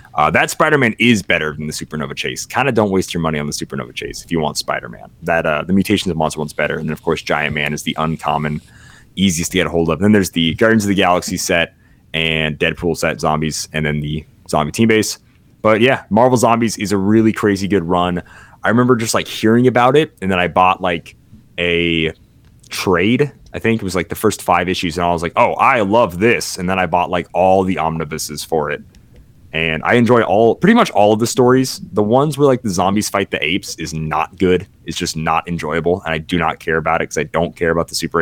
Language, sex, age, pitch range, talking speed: English, male, 30-49, 80-105 Hz, 245 wpm